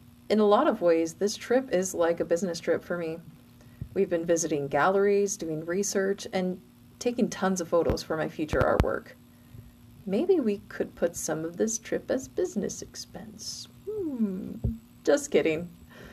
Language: English